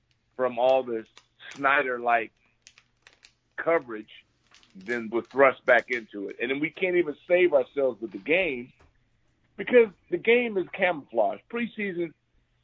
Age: 50-69